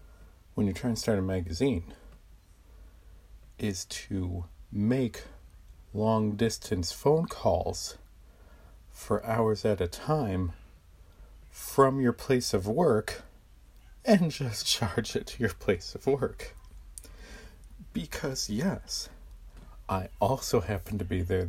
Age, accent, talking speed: 40-59, American, 115 wpm